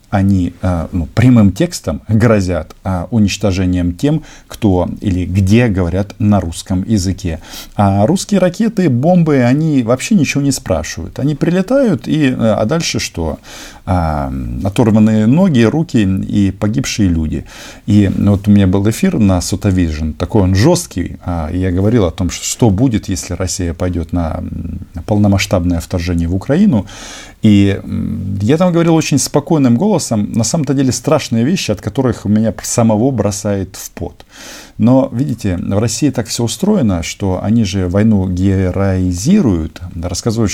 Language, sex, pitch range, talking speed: Russian, male, 90-120 Hz, 135 wpm